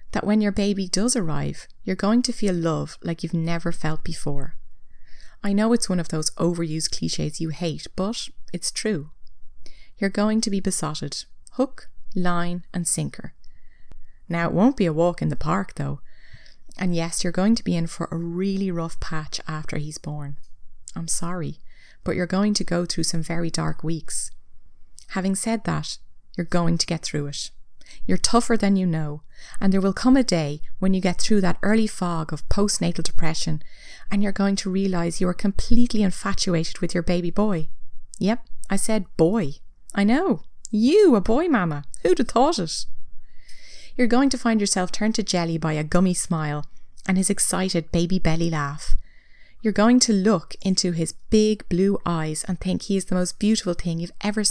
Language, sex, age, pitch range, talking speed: English, female, 30-49, 160-200 Hz, 185 wpm